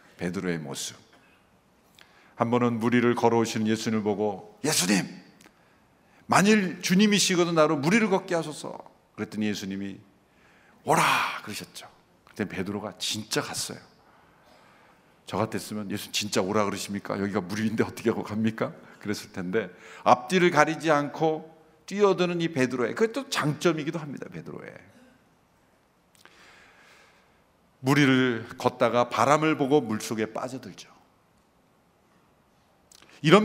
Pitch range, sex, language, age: 105-160 Hz, male, Korean, 50-69